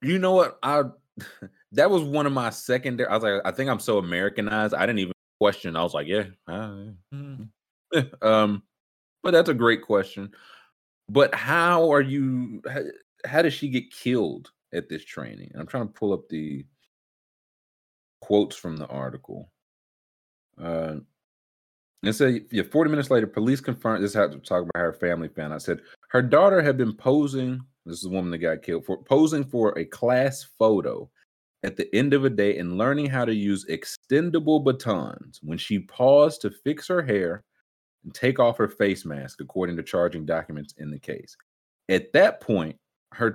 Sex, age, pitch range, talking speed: male, 30-49, 90-140 Hz, 185 wpm